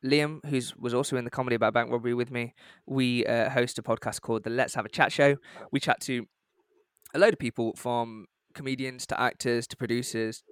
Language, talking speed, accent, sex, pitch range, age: English, 210 wpm, British, male, 120-140 Hz, 20-39